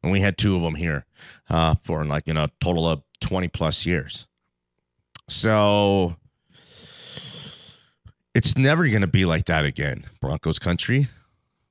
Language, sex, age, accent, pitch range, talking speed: English, male, 30-49, American, 90-130 Hz, 145 wpm